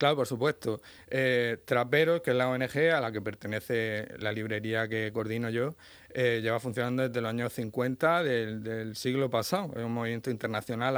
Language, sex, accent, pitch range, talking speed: Spanish, male, Spanish, 110-130 Hz, 180 wpm